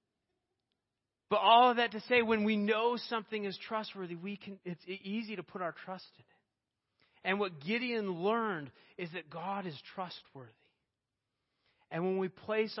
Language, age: English, 40-59